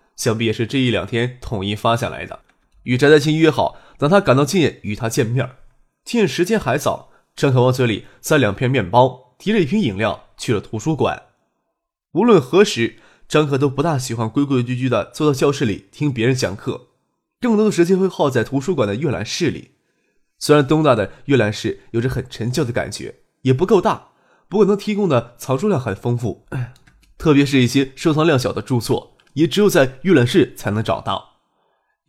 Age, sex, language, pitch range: 20-39, male, Chinese, 120-160 Hz